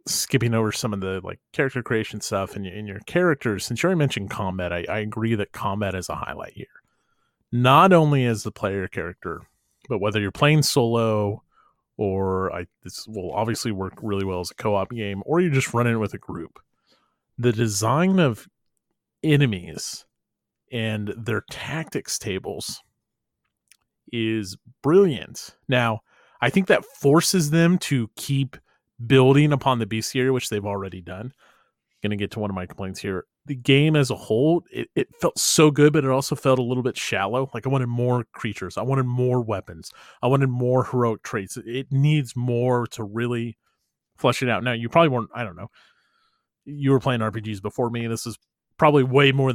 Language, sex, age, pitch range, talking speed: English, male, 30-49, 105-135 Hz, 185 wpm